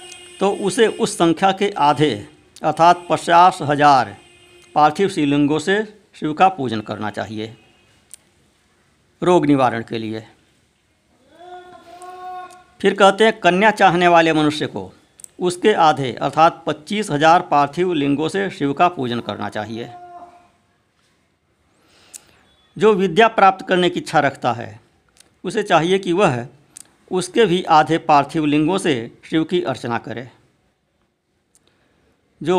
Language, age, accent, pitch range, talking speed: Hindi, 50-69, native, 130-195 Hz, 120 wpm